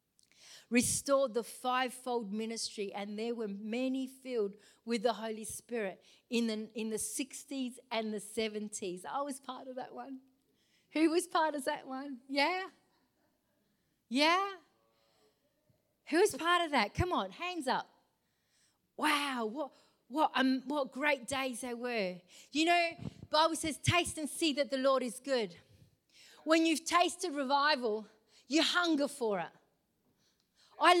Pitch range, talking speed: 240-325 Hz, 145 wpm